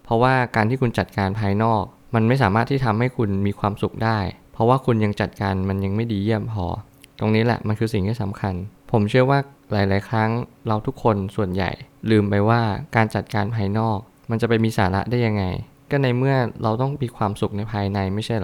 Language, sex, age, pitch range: Thai, male, 20-39, 100-120 Hz